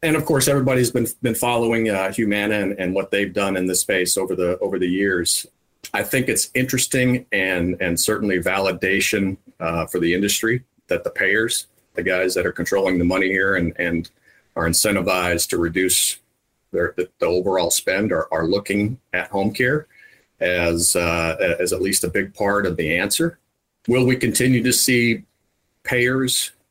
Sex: male